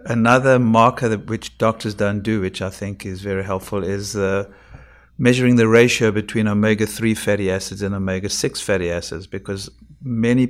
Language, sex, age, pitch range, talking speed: English, male, 50-69, 100-110 Hz, 160 wpm